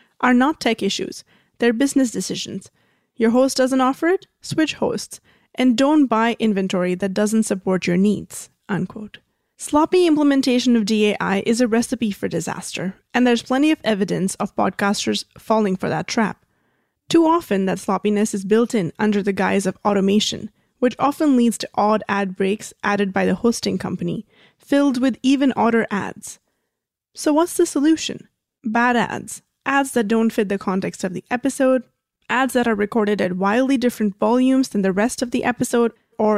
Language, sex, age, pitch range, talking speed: English, female, 20-39, 205-255 Hz, 170 wpm